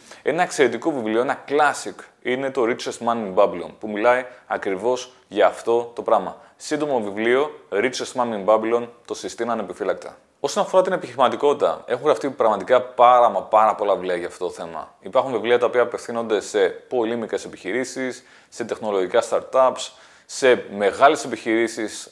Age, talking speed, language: 30-49, 155 wpm, Greek